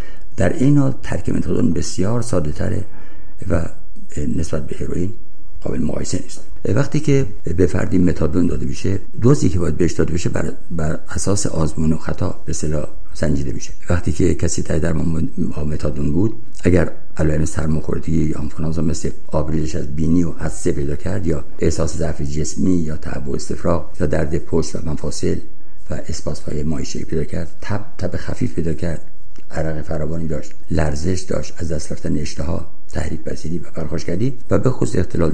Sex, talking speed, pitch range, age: male, 165 wpm, 80-95 Hz, 60-79